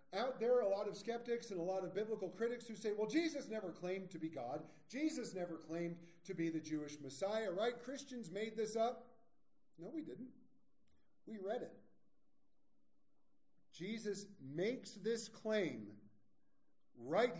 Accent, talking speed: American, 160 wpm